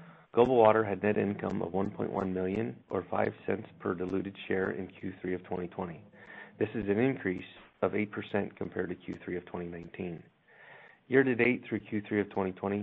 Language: English